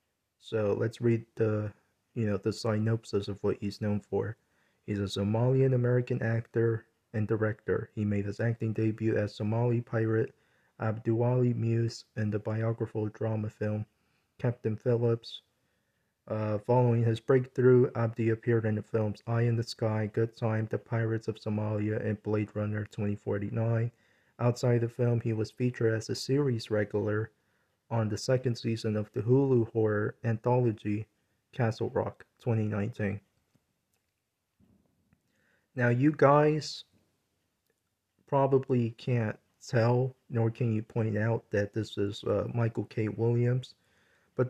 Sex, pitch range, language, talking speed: male, 105-120 Hz, English, 135 wpm